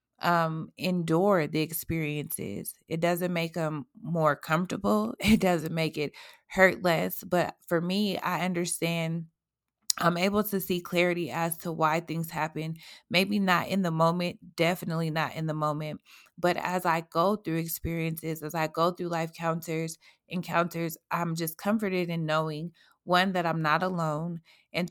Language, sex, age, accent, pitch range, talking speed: English, female, 20-39, American, 160-185 Hz, 155 wpm